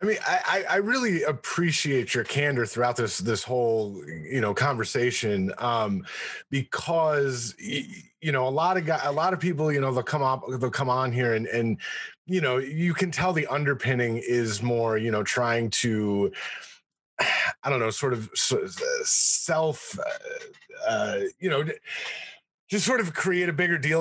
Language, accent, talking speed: English, American, 175 wpm